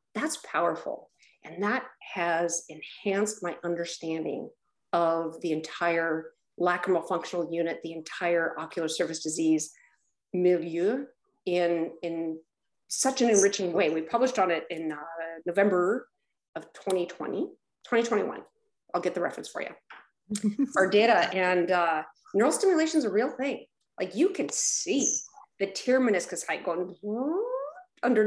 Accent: American